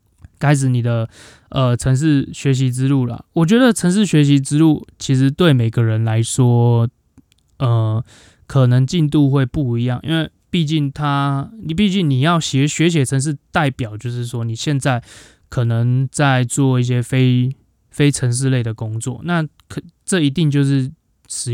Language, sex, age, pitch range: Chinese, male, 20-39, 120-150 Hz